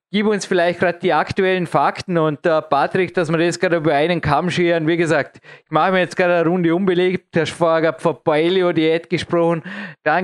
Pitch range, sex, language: 160-185 Hz, male, German